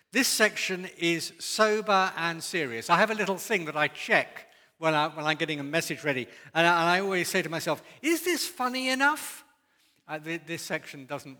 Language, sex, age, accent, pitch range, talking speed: English, male, 60-79, British, 135-200 Hz, 205 wpm